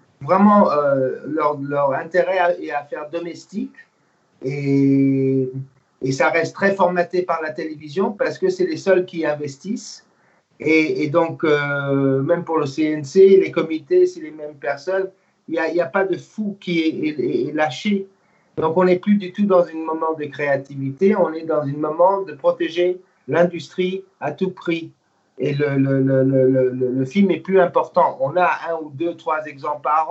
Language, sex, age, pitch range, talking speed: French, male, 50-69, 140-185 Hz, 185 wpm